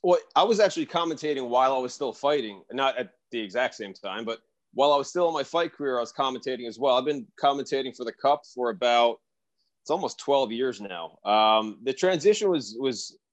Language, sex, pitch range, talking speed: English, male, 120-145 Hz, 215 wpm